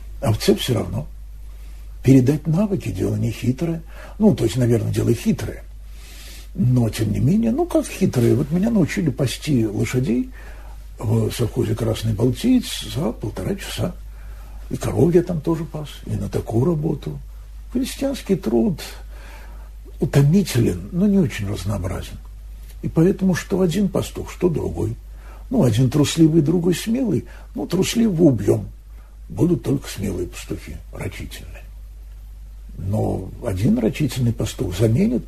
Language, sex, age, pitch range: Russian, male, 60-79, 110-170 Hz